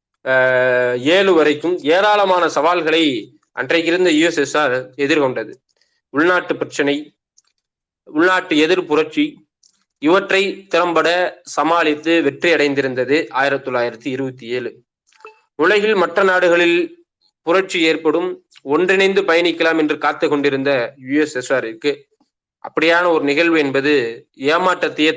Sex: male